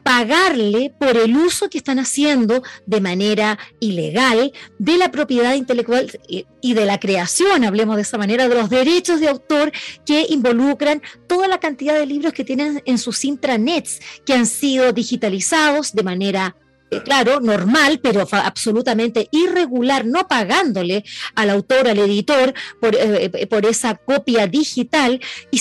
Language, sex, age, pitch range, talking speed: Spanish, female, 30-49, 215-290 Hz, 150 wpm